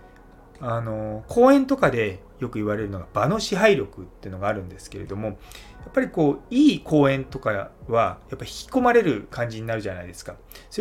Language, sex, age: Japanese, male, 30-49